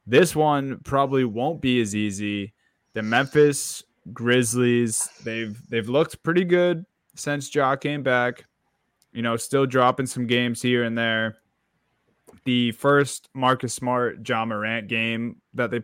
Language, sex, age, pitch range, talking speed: English, male, 20-39, 110-125 Hz, 140 wpm